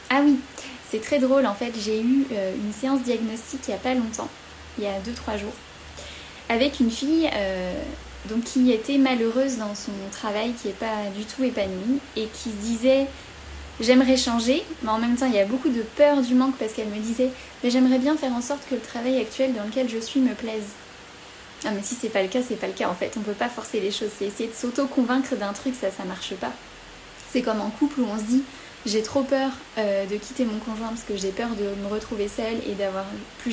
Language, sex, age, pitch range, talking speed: French, female, 10-29, 210-260 Hz, 240 wpm